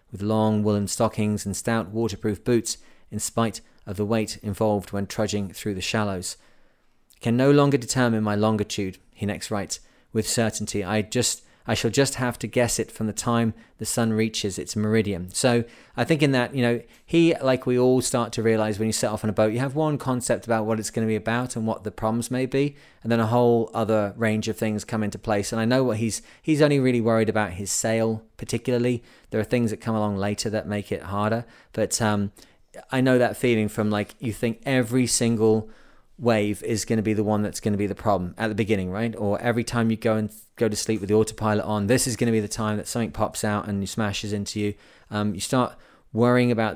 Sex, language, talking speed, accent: male, English, 235 wpm, British